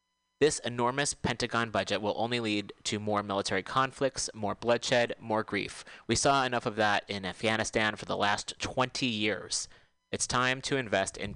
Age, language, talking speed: 30-49, English, 170 wpm